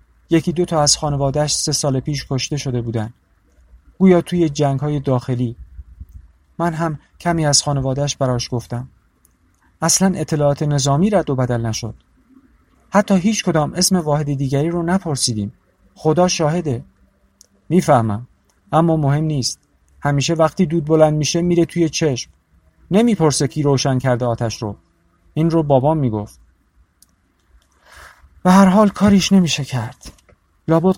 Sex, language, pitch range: male, Persian, 110-160 Hz